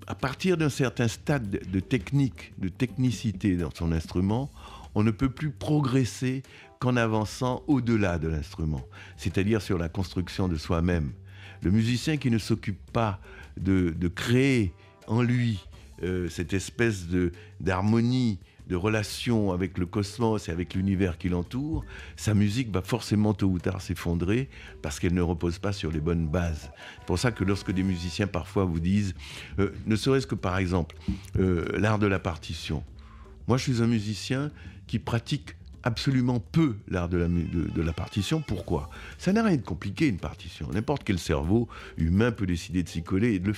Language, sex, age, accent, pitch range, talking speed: French, male, 60-79, French, 90-125 Hz, 180 wpm